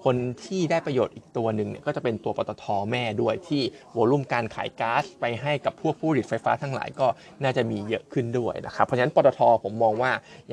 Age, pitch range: 20-39, 115-140 Hz